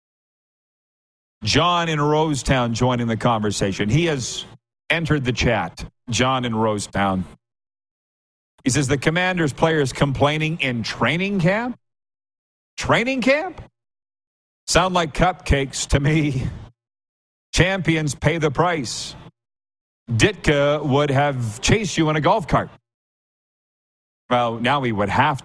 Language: English